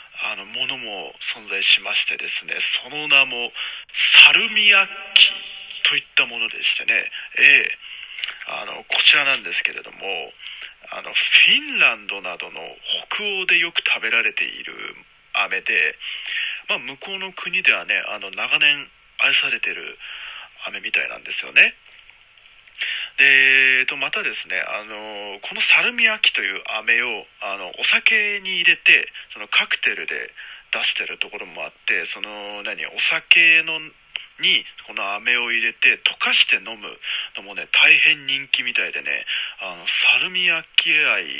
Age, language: 20-39, Japanese